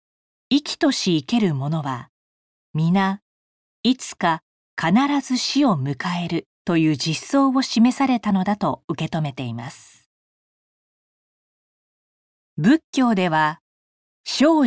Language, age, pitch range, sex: Japanese, 40-59, 155-235 Hz, female